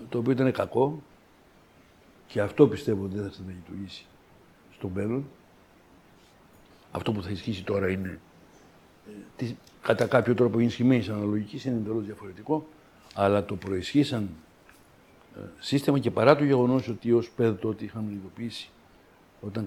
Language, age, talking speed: Greek, 60-79, 130 wpm